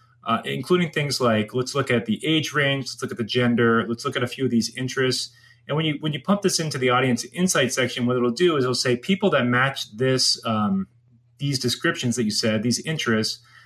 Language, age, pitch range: English, 30-49, 120-140 Hz